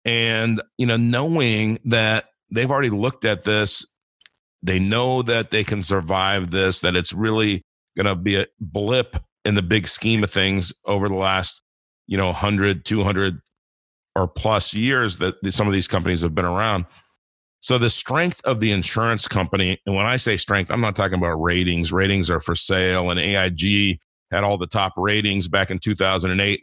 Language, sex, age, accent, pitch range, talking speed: English, male, 40-59, American, 95-110 Hz, 180 wpm